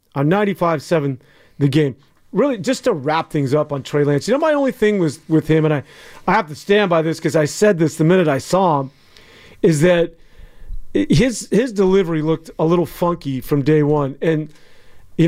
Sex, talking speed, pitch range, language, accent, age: male, 205 wpm, 150-185 Hz, English, American, 40-59